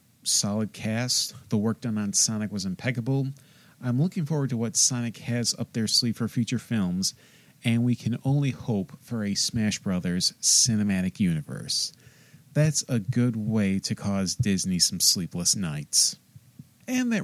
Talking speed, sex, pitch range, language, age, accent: 155 wpm, male, 110-150 Hz, English, 40-59, American